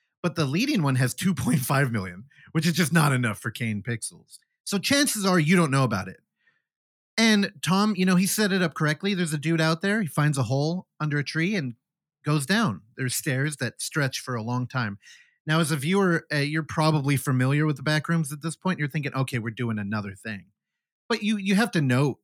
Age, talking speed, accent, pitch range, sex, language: 30-49, 225 wpm, American, 125-170 Hz, male, English